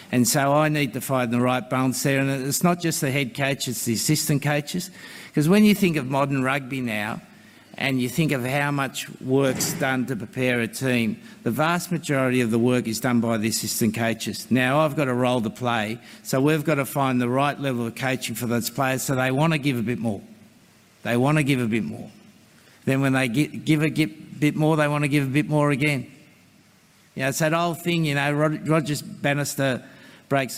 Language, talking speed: English, 225 wpm